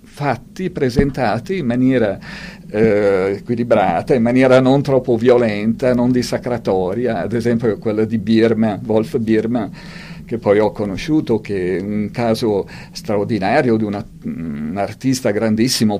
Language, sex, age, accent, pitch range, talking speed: Italian, male, 50-69, native, 110-140 Hz, 130 wpm